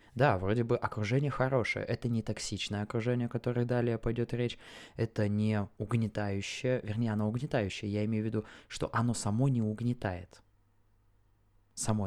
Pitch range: 105-130 Hz